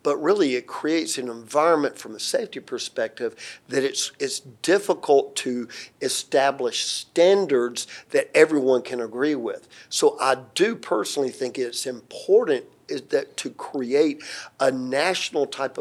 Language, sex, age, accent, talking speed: English, male, 50-69, American, 135 wpm